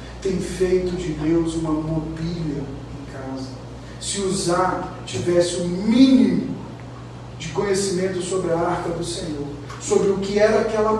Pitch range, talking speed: 150-185 Hz, 140 wpm